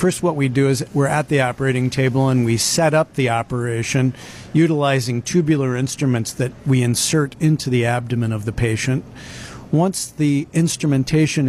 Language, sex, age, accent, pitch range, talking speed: English, male, 50-69, American, 120-140 Hz, 160 wpm